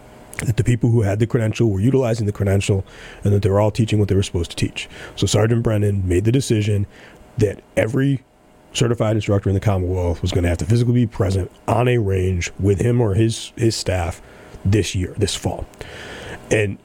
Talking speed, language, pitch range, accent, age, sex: 200 wpm, English, 100-125 Hz, American, 30-49, male